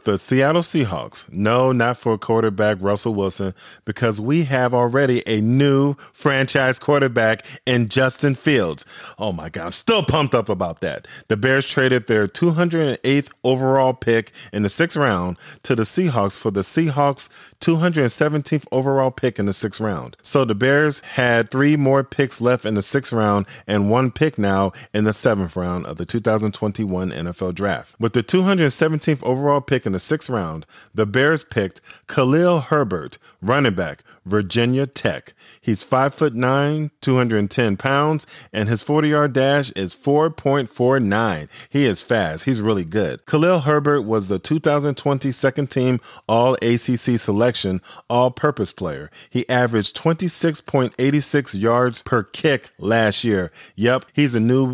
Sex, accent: male, American